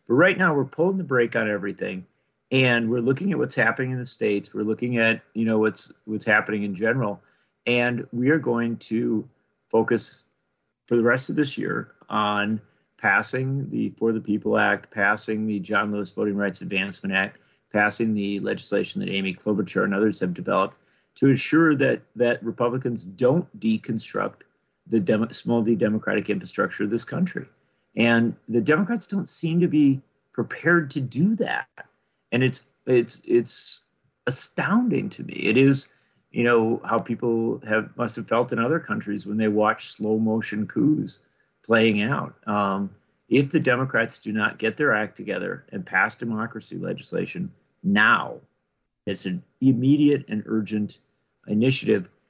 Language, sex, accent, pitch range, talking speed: English, male, American, 105-135 Hz, 160 wpm